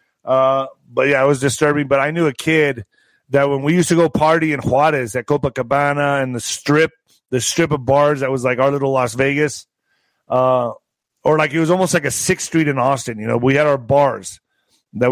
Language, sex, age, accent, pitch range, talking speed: English, male, 30-49, American, 135-170 Hz, 220 wpm